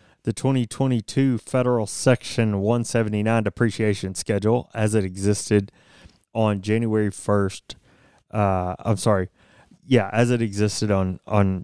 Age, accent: 30-49, American